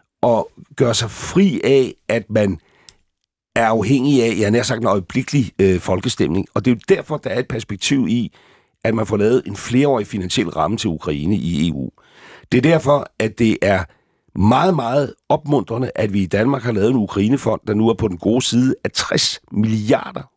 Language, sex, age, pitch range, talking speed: Danish, male, 60-79, 105-135 Hz, 195 wpm